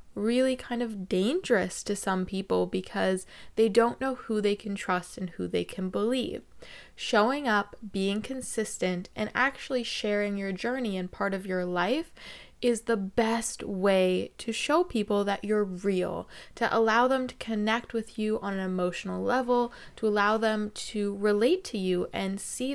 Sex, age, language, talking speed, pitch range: female, 20-39, English, 170 wpm, 190-240 Hz